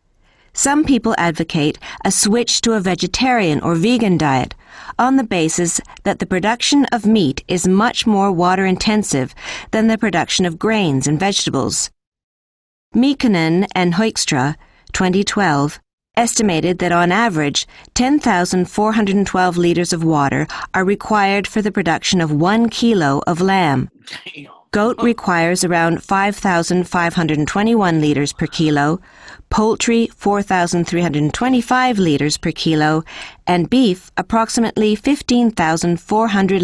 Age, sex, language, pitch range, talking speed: 40-59, female, English, 165-215 Hz, 110 wpm